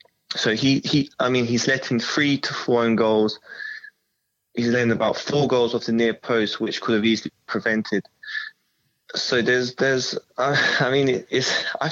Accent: British